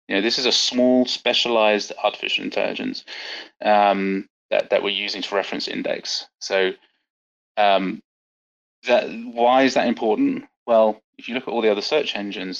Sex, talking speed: male, 160 wpm